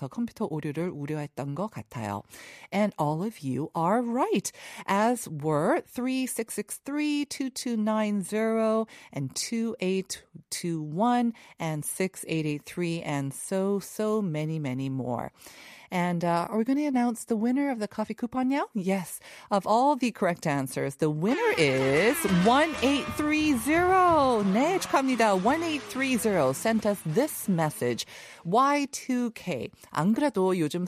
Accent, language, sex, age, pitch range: American, Korean, female, 40-59, 150-235 Hz